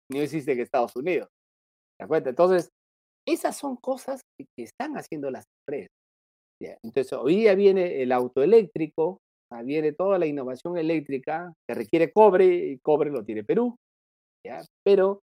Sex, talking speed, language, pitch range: male, 140 wpm, Spanish, 140-195 Hz